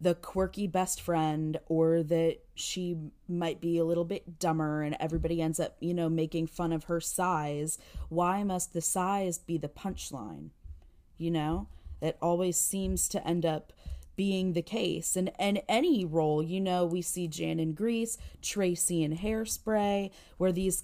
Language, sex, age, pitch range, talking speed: English, female, 20-39, 165-195 Hz, 165 wpm